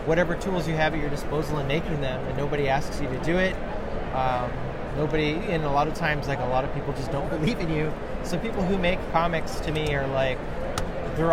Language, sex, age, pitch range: English, male, 20-39, 135-160 Hz